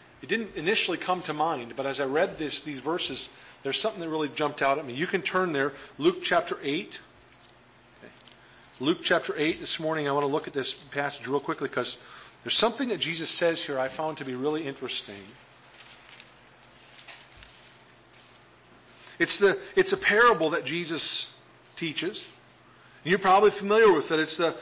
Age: 40-59